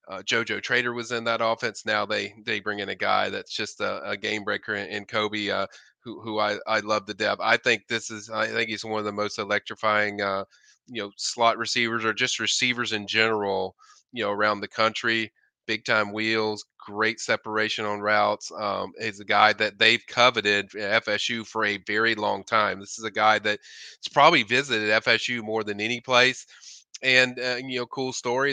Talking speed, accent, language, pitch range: 200 wpm, American, English, 105-120 Hz